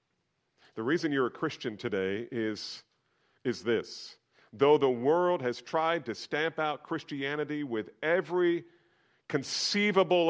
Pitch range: 120-180 Hz